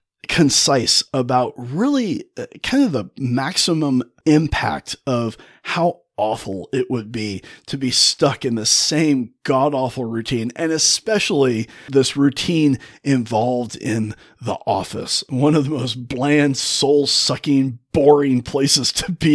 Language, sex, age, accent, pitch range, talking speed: English, male, 30-49, American, 120-155 Hz, 125 wpm